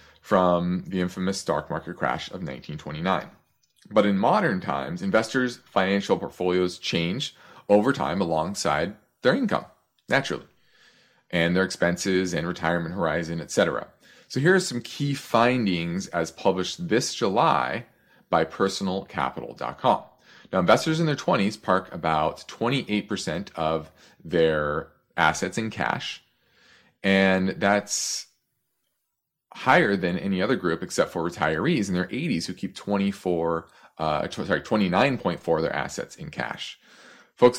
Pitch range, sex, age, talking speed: 85-115 Hz, male, 30-49, 125 wpm